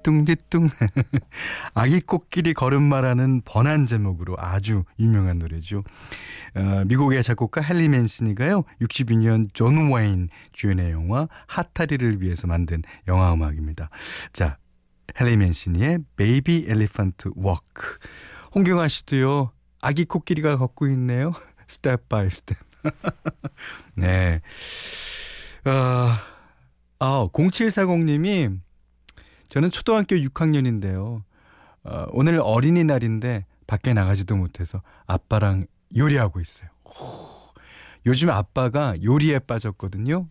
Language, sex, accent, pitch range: Korean, male, native, 95-150 Hz